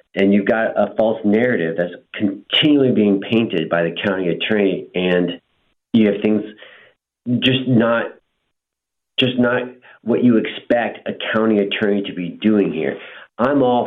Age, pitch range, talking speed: 40-59, 90-105 Hz, 145 wpm